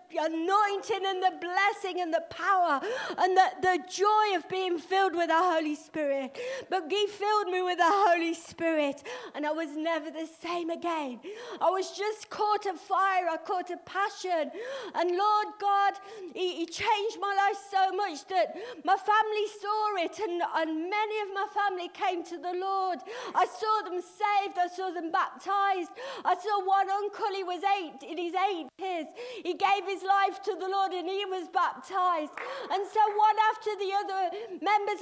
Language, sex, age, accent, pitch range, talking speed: English, female, 40-59, British, 350-410 Hz, 180 wpm